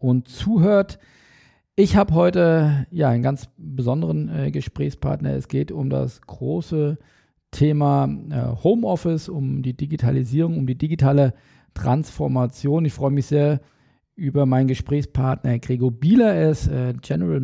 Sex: male